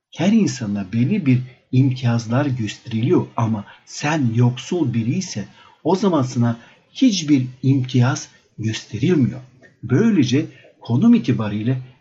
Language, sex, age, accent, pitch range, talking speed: Turkish, male, 60-79, native, 120-160 Hz, 100 wpm